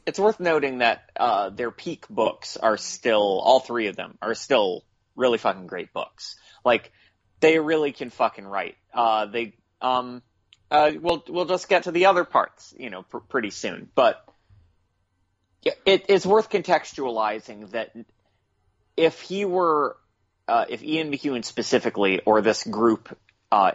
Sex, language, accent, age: male, English, American, 30-49